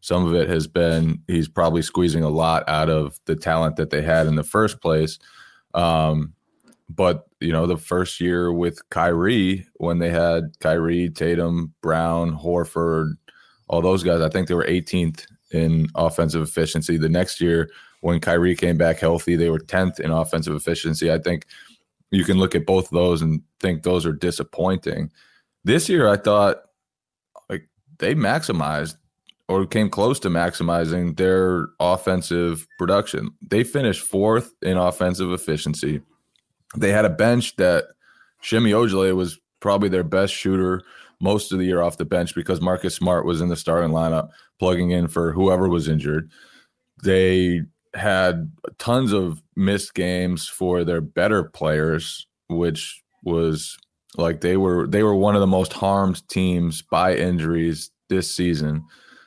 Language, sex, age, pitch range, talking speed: English, male, 20-39, 80-95 Hz, 160 wpm